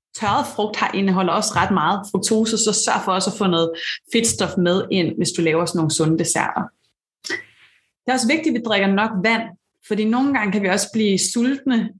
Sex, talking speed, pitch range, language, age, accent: female, 210 wpm, 175-225 Hz, Danish, 30-49, native